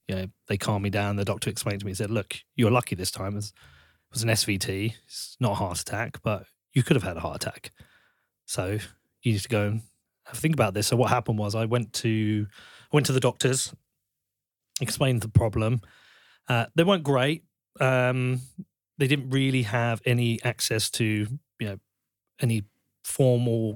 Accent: British